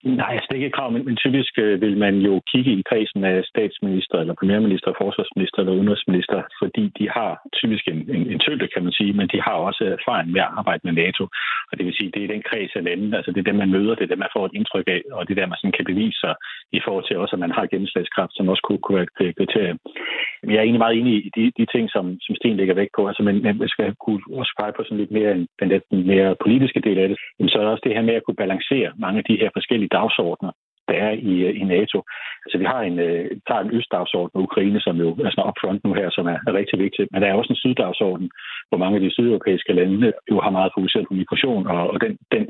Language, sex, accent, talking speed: Danish, male, native, 260 wpm